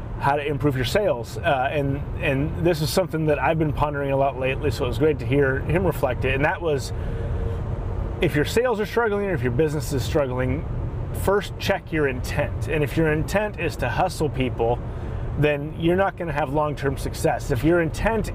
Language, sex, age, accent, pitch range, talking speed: English, male, 30-49, American, 120-155 Hz, 205 wpm